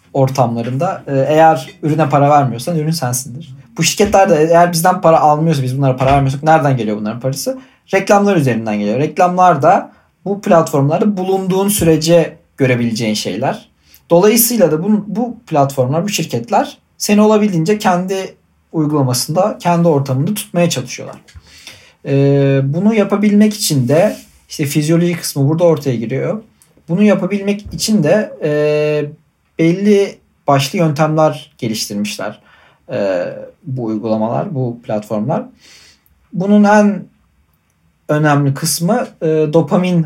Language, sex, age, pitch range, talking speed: Turkish, male, 40-59, 130-175 Hz, 115 wpm